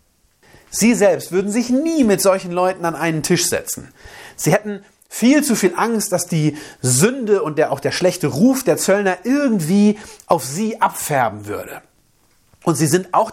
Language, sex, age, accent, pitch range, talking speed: German, male, 40-59, German, 140-195 Hz, 170 wpm